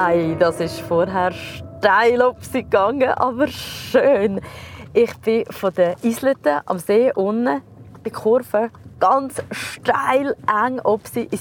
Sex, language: female, German